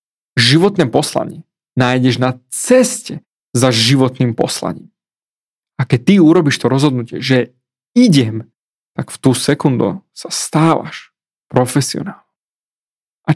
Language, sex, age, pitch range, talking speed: Slovak, male, 30-49, 130-175 Hz, 110 wpm